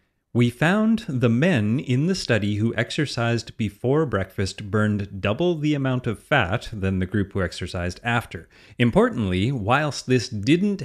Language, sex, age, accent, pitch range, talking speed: English, male, 30-49, American, 100-130 Hz, 150 wpm